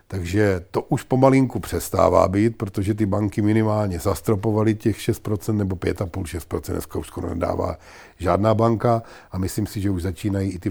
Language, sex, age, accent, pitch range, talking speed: Czech, male, 50-69, native, 90-105 Hz, 160 wpm